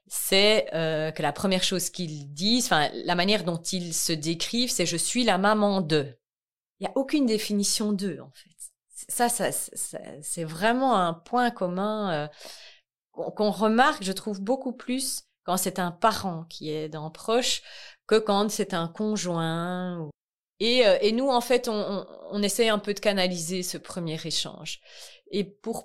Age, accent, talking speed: 30-49, French, 180 wpm